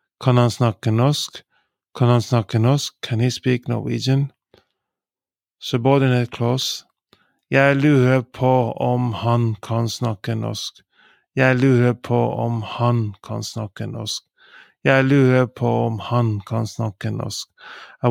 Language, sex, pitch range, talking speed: English, male, 115-130 Hz, 130 wpm